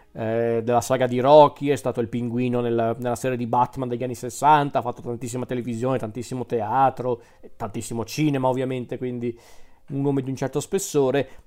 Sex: male